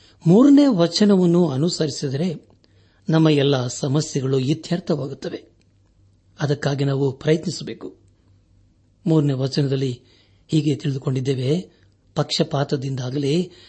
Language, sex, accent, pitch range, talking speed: Kannada, male, native, 100-160 Hz, 65 wpm